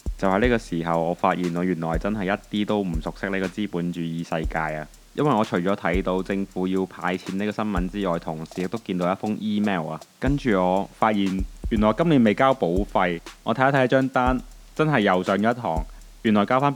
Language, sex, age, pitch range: Chinese, male, 20-39, 90-110 Hz